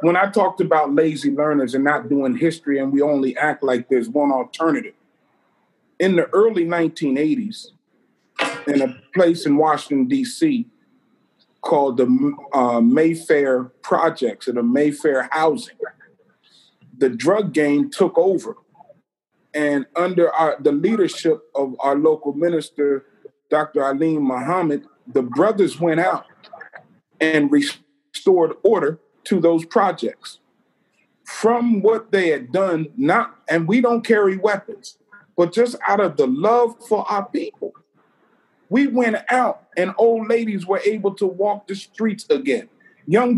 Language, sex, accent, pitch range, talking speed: English, male, American, 155-230 Hz, 135 wpm